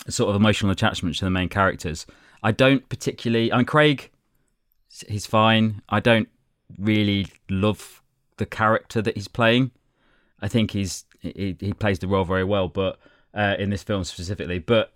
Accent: British